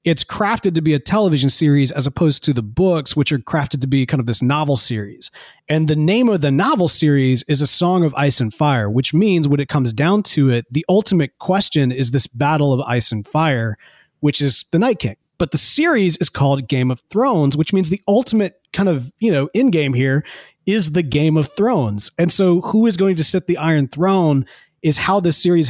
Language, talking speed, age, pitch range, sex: English, 225 wpm, 30-49, 135-175 Hz, male